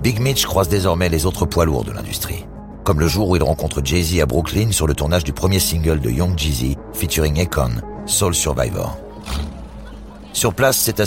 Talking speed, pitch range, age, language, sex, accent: 195 wpm, 75-95 Hz, 60-79, French, male, French